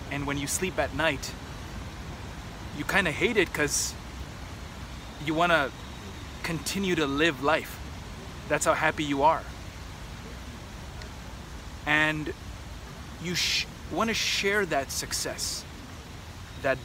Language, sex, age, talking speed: English, male, 30-49, 115 wpm